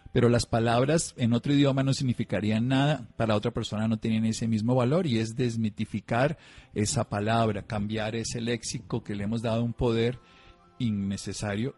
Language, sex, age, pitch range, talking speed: Spanish, male, 40-59, 100-120 Hz, 165 wpm